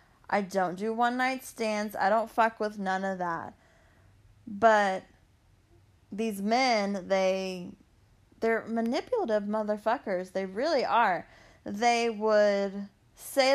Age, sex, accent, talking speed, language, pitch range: 20-39, female, American, 115 wpm, English, 180-225 Hz